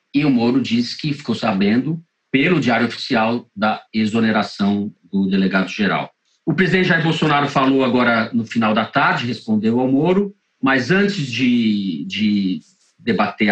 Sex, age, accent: male, 40-59, Brazilian